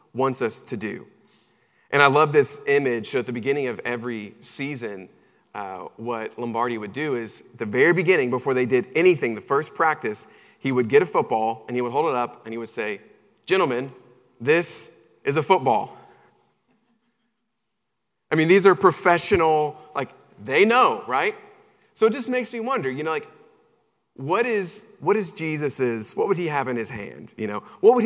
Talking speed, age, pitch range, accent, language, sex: 185 wpm, 30-49, 120-190 Hz, American, English, male